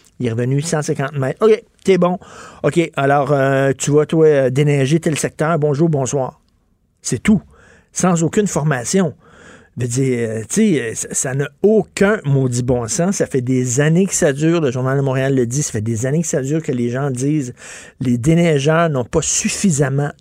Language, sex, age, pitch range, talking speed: French, male, 50-69, 130-165 Hz, 200 wpm